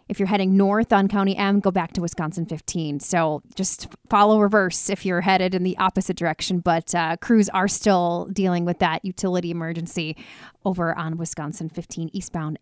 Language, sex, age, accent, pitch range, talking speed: English, female, 30-49, American, 180-245 Hz, 180 wpm